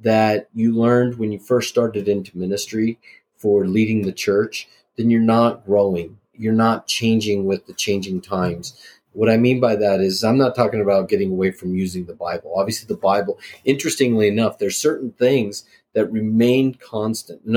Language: English